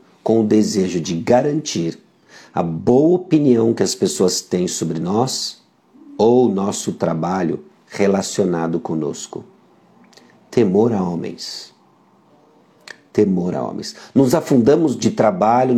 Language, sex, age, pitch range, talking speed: Portuguese, male, 50-69, 110-155 Hz, 115 wpm